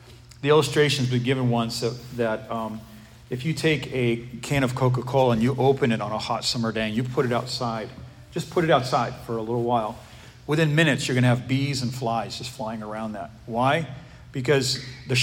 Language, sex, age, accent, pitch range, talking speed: English, male, 40-59, American, 120-135 Hz, 210 wpm